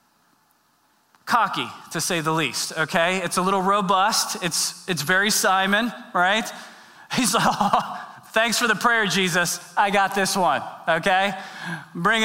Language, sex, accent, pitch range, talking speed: English, male, American, 170-220 Hz, 140 wpm